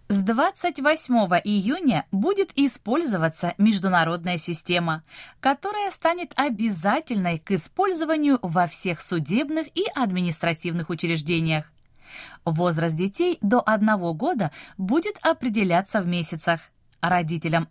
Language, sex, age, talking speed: Russian, female, 20-39, 95 wpm